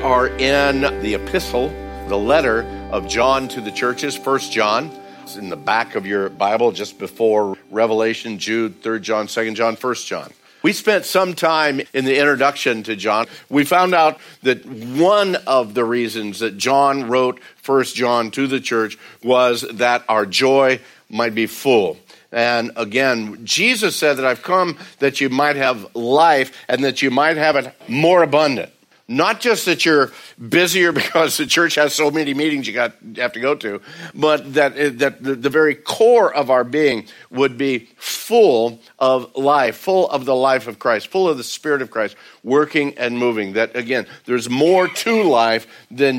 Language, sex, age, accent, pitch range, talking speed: English, male, 50-69, American, 115-145 Hz, 175 wpm